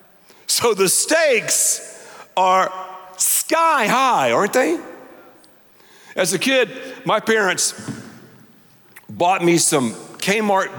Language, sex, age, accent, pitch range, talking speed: English, male, 50-69, American, 160-235 Hz, 95 wpm